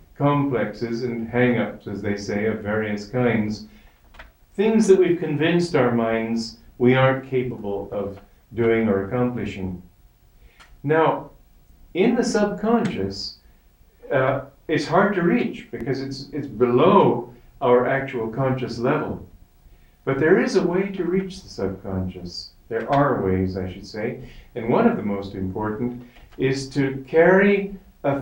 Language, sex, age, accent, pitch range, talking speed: English, male, 50-69, American, 100-150 Hz, 135 wpm